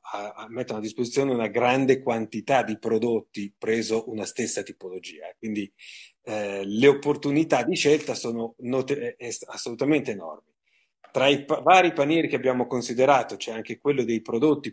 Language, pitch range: Italian, 115-155 Hz